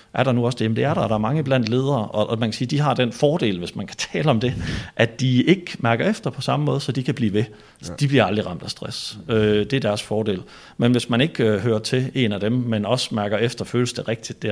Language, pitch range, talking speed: Danish, 105-130 Hz, 280 wpm